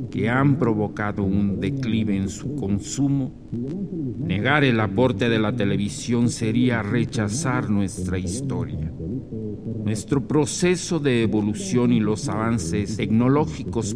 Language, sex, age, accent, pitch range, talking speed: Spanish, male, 50-69, Mexican, 105-130 Hz, 110 wpm